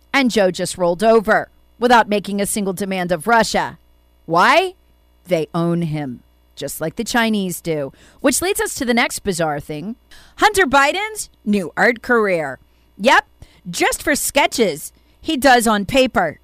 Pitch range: 185-275 Hz